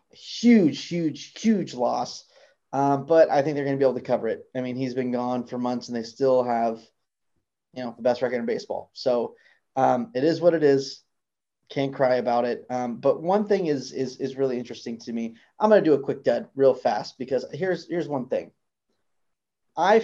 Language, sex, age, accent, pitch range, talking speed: English, male, 30-49, American, 125-145 Hz, 215 wpm